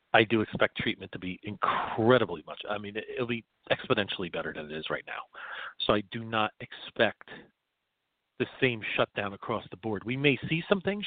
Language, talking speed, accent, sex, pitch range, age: English, 190 wpm, American, male, 100-125 Hz, 40-59